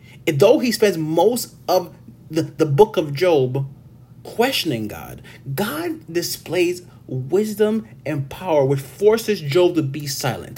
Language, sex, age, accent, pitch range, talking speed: English, male, 30-49, American, 125-165 Hz, 130 wpm